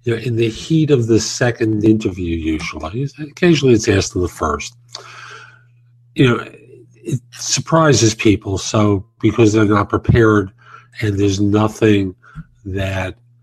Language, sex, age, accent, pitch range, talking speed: English, male, 50-69, American, 105-140 Hz, 135 wpm